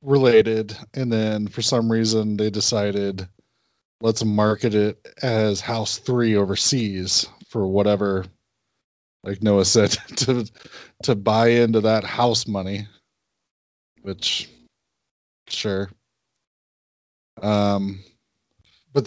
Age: 20-39